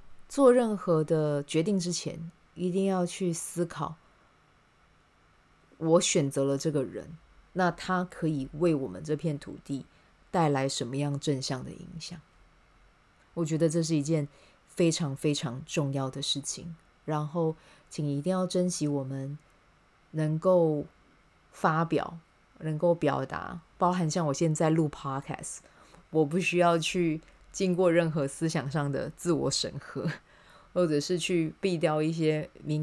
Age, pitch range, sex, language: 20-39, 145-170 Hz, female, Chinese